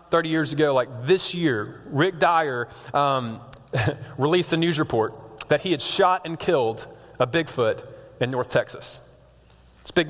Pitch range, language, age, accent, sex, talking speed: 130-170 Hz, English, 20-39, American, male, 155 wpm